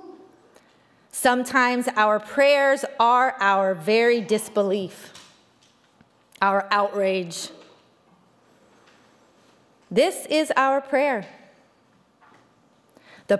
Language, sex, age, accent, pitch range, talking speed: English, female, 30-49, American, 200-270 Hz, 65 wpm